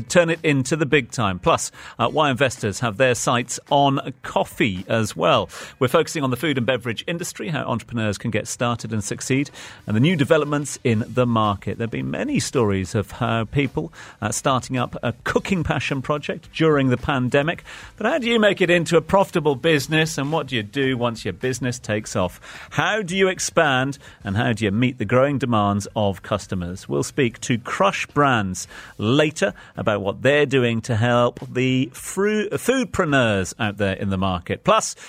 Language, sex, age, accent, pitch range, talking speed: English, male, 40-59, British, 115-160 Hz, 190 wpm